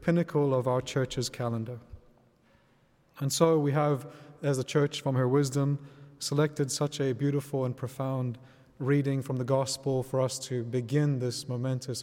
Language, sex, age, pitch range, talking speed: English, male, 30-49, 130-150 Hz, 155 wpm